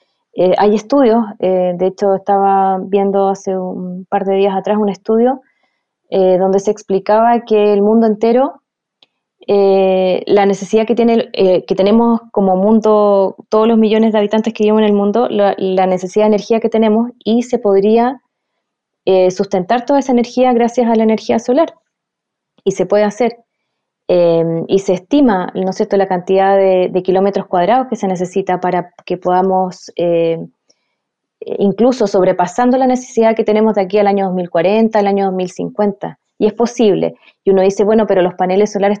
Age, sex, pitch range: 20-39, female, 185-225 Hz